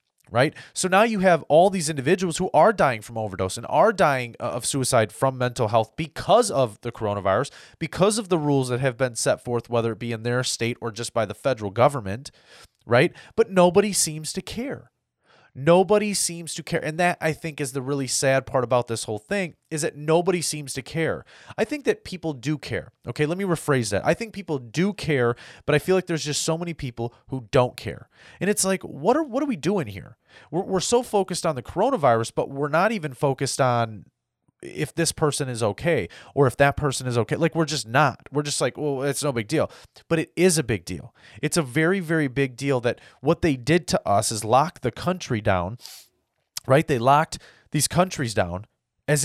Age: 30-49